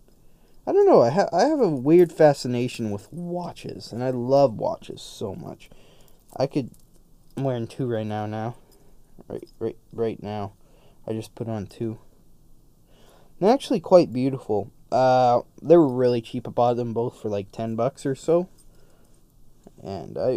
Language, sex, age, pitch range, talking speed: English, male, 20-39, 115-165 Hz, 165 wpm